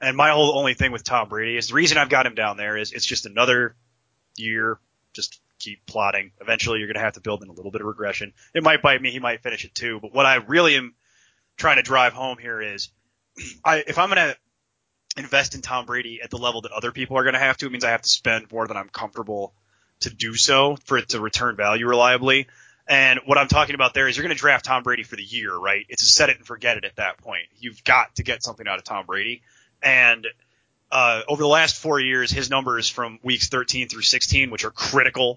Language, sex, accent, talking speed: English, male, American, 250 wpm